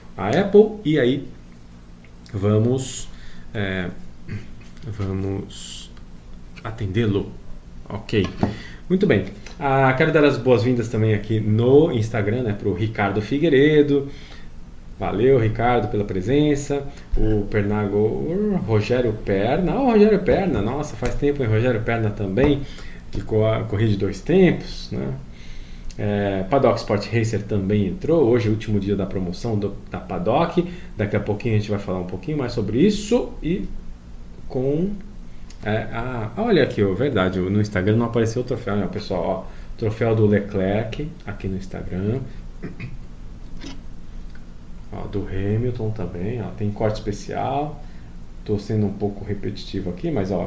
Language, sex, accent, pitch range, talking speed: Portuguese, male, Brazilian, 95-120 Hz, 135 wpm